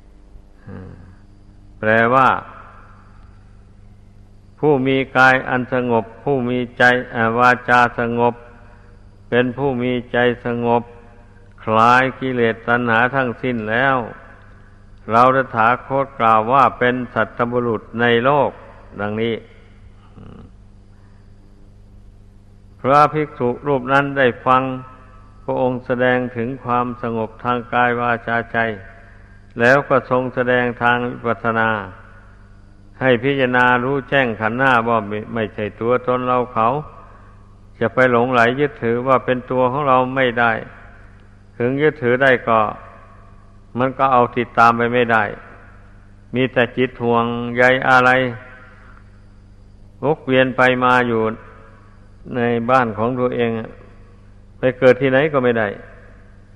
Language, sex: Thai, male